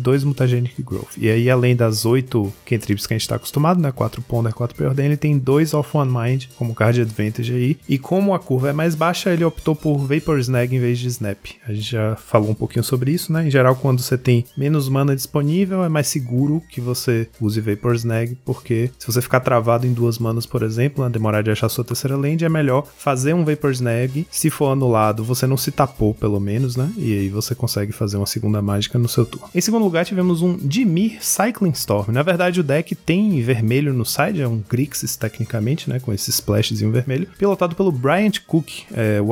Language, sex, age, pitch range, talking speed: Portuguese, male, 20-39, 115-150 Hz, 225 wpm